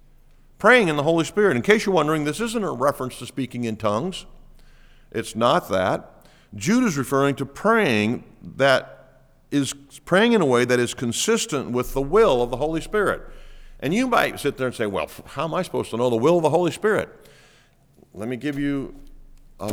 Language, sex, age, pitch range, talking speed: English, male, 50-69, 110-160 Hz, 195 wpm